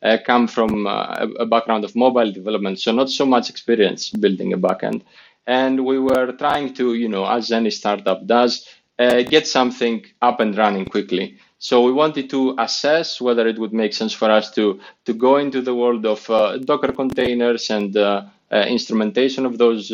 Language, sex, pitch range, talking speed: English, male, 105-125 Hz, 190 wpm